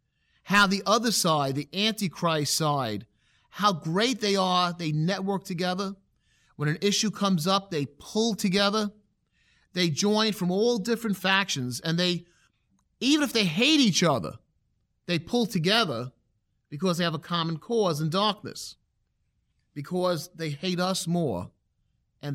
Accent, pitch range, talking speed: American, 140-195 Hz, 140 wpm